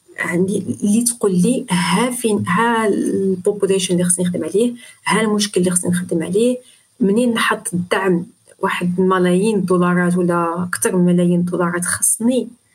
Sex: female